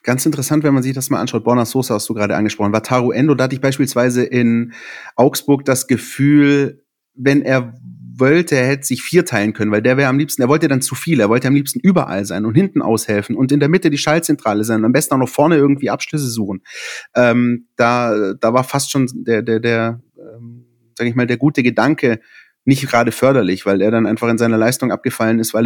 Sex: male